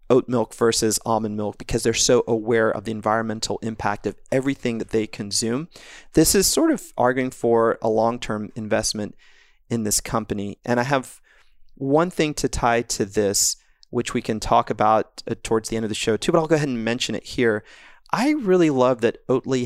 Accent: American